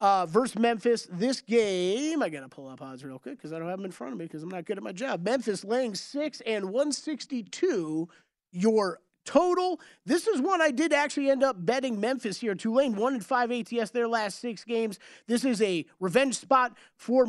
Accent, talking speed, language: American, 215 wpm, English